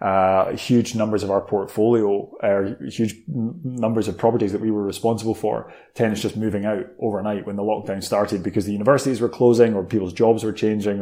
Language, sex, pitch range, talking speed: English, male, 105-120 Hz, 195 wpm